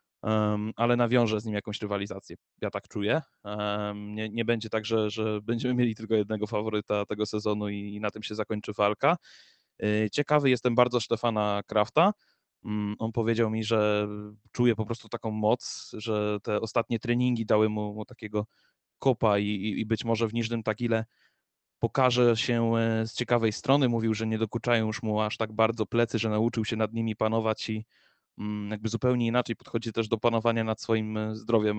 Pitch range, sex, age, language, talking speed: 110-120 Hz, male, 20-39, Polish, 175 wpm